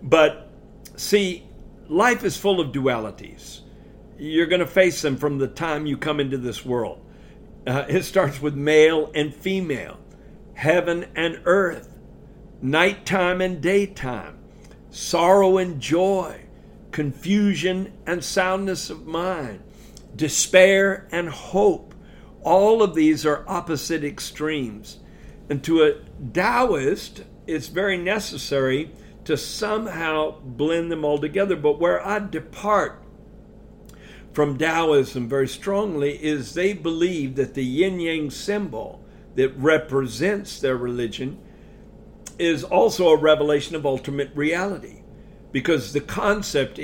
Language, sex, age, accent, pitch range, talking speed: English, male, 60-79, American, 140-190 Hz, 120 wpm